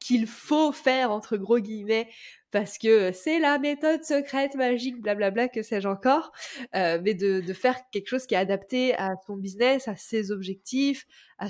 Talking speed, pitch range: 175 wpm, 185-240 Hz